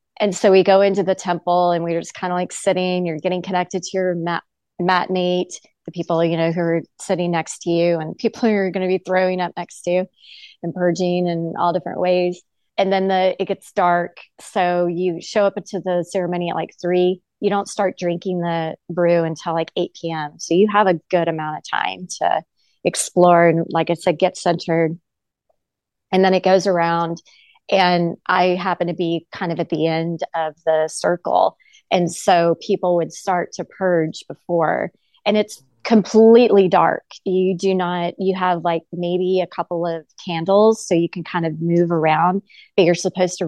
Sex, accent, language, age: female, American, English, 30-49